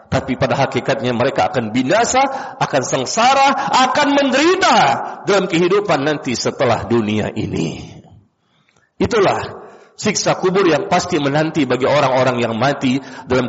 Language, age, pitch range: Indonesian, 50-69, 140-215 Hz